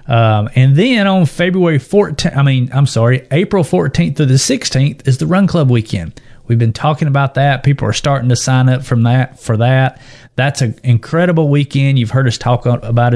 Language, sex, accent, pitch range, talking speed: English, male, American, 120-140 Hz, 200 wpm